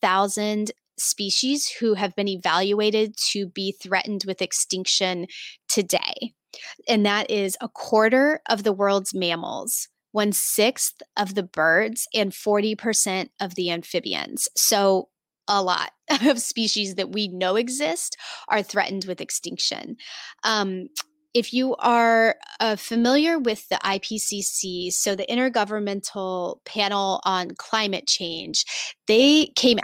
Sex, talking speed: female, 125 wpm